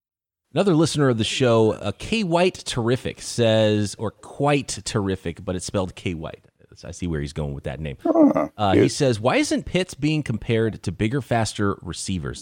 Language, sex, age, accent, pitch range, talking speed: English, male, 30-49, American, 95-125 Hz, 190 wpm